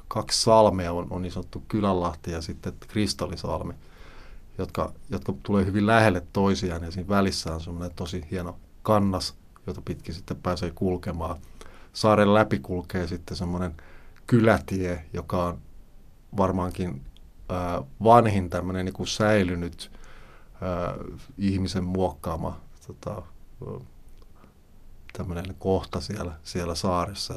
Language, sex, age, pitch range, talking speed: Finnish, male, 30-49, 85-100 Hz, 110 wpm